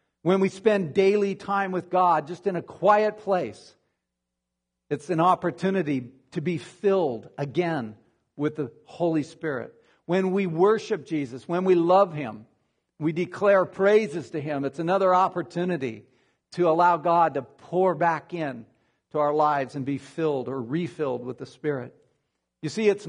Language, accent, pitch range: English, American, 150-205 Hz